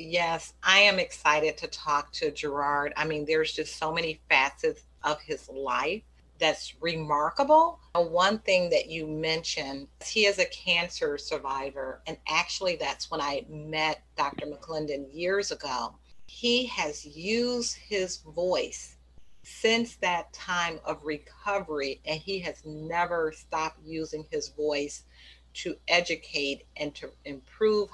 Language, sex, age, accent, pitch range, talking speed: English, female, 40-59, American, 155-195 Hz, 135 wpm